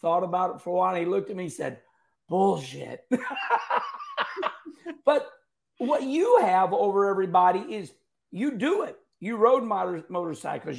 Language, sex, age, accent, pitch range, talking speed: English, male, 50-69, American, 185-245 Hz, 150 wpm